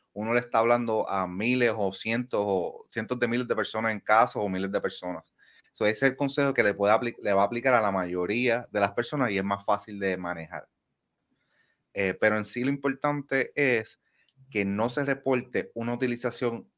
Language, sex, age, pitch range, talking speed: Spanish, male, 30-49, 100-125 Hz, 205 wpm